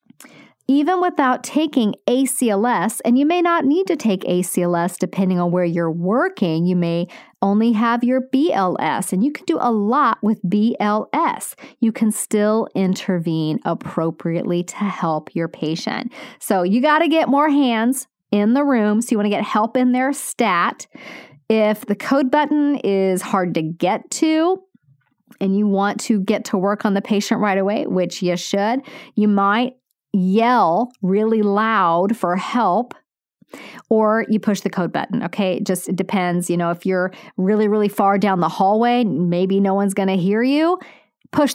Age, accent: 40-59, American